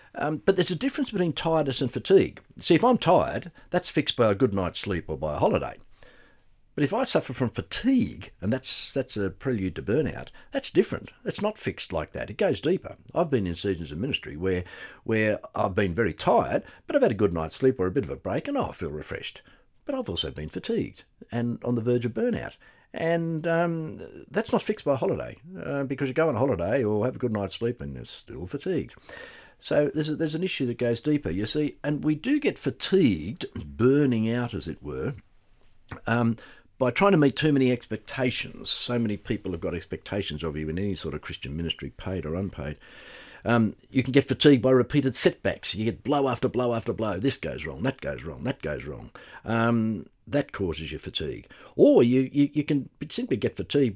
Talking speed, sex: 220 wpm, male